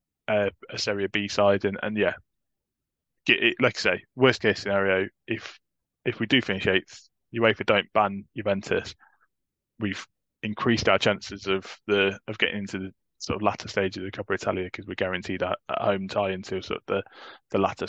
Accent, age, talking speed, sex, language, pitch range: British, 20-39, 185 wpm, male, English, 95-110 Hz